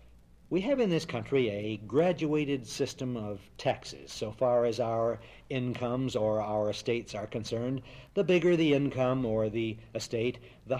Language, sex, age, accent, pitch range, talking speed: English, male, 60-79, American, 110-160 Hz, 155 wpm